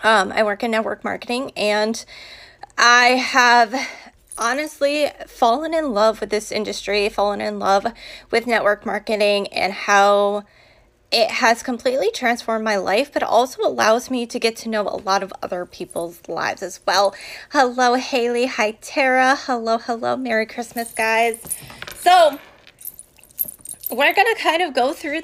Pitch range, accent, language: 215-270 Hz, American, English